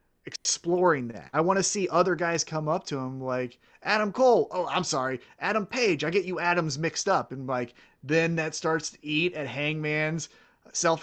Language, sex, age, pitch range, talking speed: English, male, 30-49, 150-210 Hz, 195 wpm